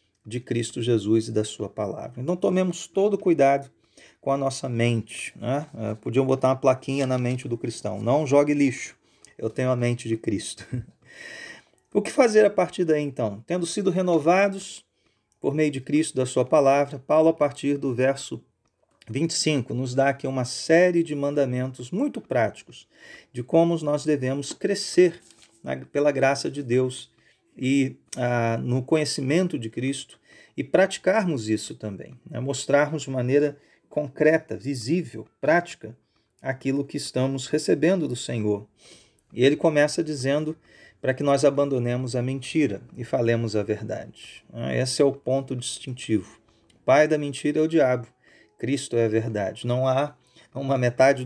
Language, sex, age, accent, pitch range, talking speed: Portuguese, male, 40-59, Brazilian, 120-150 Hz, 155 wpm